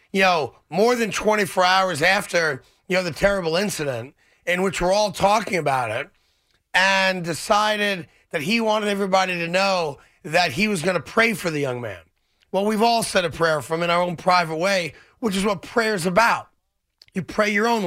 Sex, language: male, English